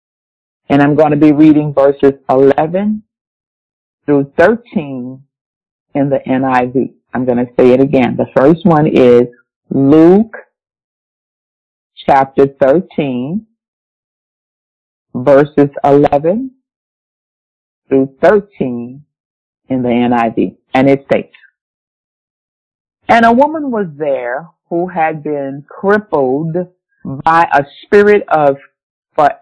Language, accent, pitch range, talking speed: English, American, 135-200 Hz, 100 wpm